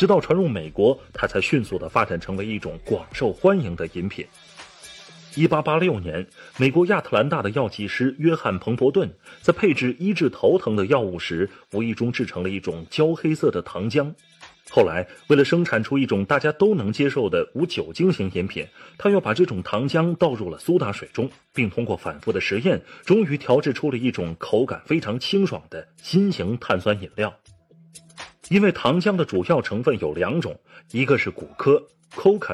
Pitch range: 110-170 Hz